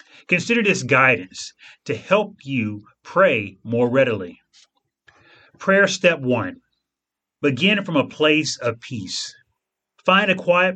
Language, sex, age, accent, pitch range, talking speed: English, male, 30-49, American, 115-170 Hz, 115 wpm